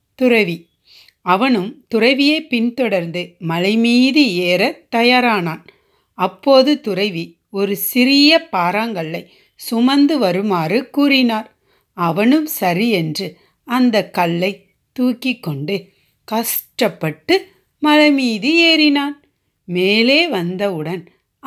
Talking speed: 75 wpm